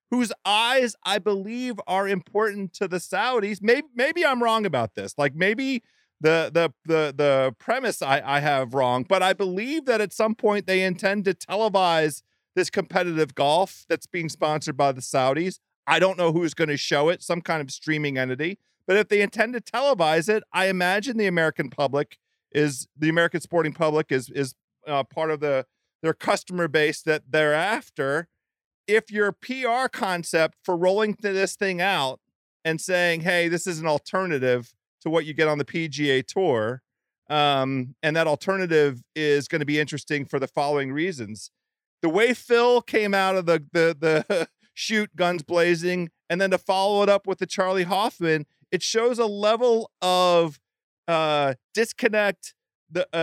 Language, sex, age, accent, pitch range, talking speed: English, male, 40-59, American, 155-205 Hz, 175 wpm